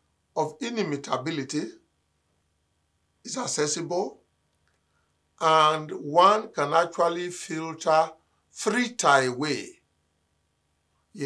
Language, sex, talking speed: English, male, 70 wpm